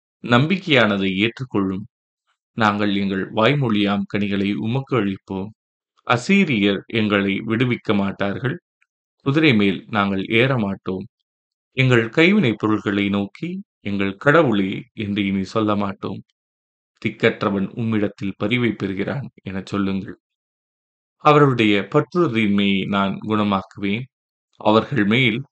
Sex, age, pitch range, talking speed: male, 20-39, 100-120 Hz, 90 wpm